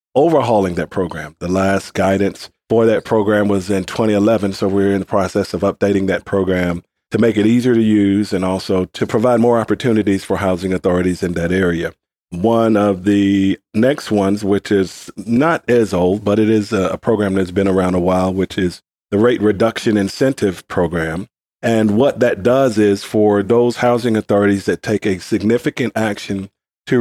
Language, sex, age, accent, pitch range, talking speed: English, male, 40-59, American, 95-115 Hz, 180 wpm